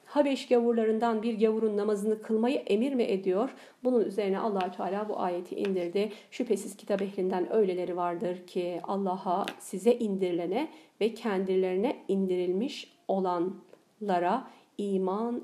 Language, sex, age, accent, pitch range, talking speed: Turkish, female, 50-69, native, 190-245 Hz, 115 wpm